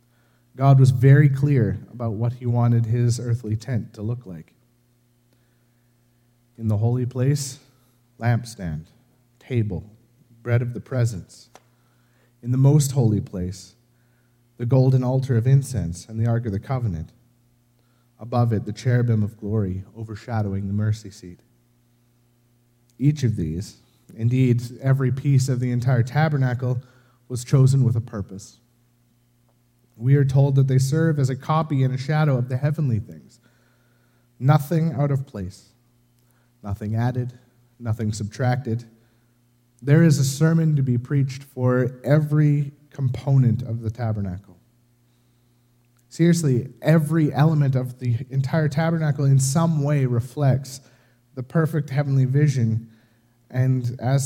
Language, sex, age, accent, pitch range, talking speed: English, male, 30-49, American, 120-130 Hz, 130 wpm